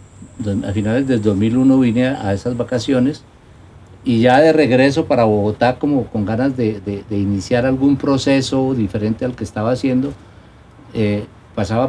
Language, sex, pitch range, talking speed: Spanish, male, 105-130 Hz, 150 wpm